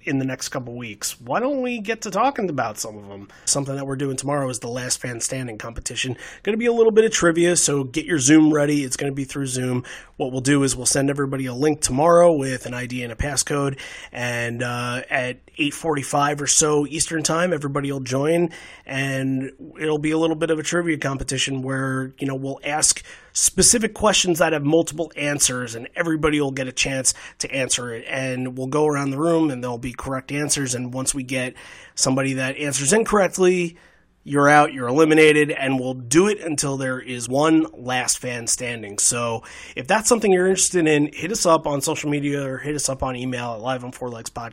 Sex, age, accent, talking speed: male, 30-49, American, 215 wpm